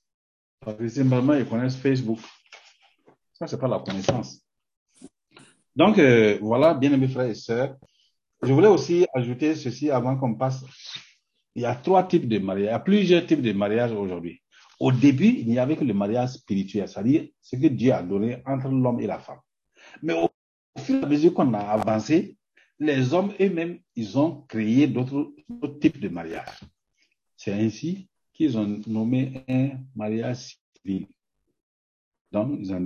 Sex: male